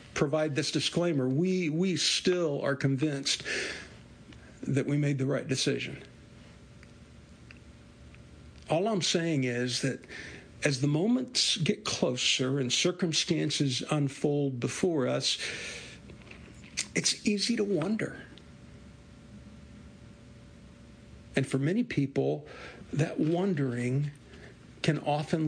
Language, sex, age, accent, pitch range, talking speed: English, male, 50-69, American, 130-160 Hz, 95 wpm